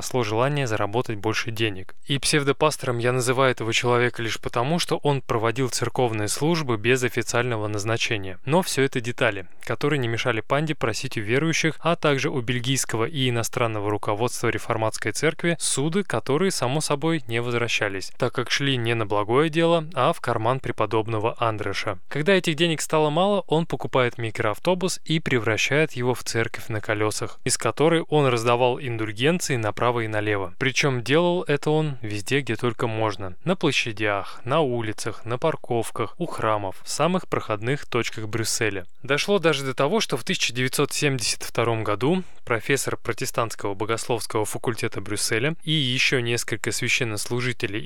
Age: 20-39